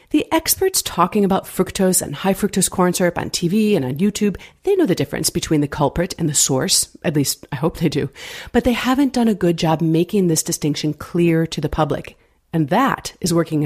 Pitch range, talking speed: 165-235 Hz, 215 wpm